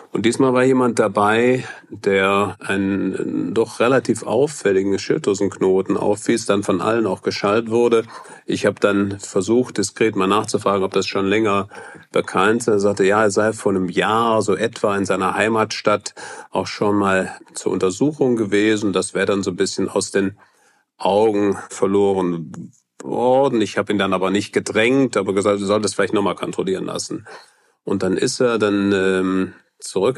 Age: 40-59